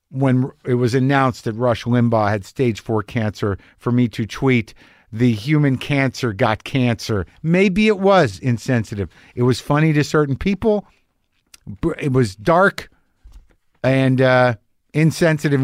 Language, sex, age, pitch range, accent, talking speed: English, male, 50-69, 120-160 Hz, American, 140 wpm